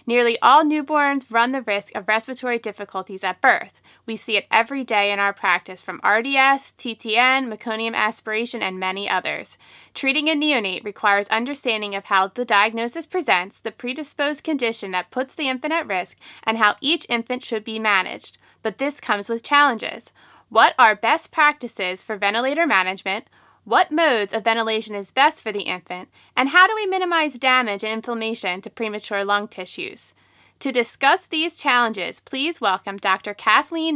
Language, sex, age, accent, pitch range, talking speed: English, female, 30-49, American, 205-280 Hz, 165 wpm